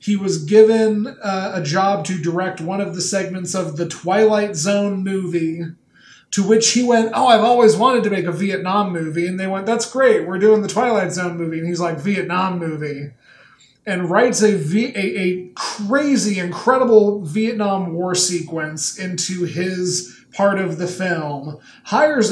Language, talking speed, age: English, 165 wpm, 30-49